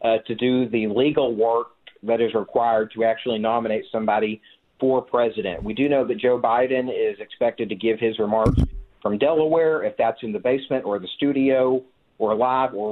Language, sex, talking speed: English, male, 185 wpm